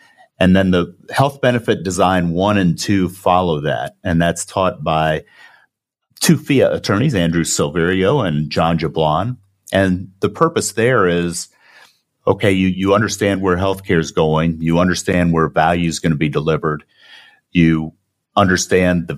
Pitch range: 85-100 Hz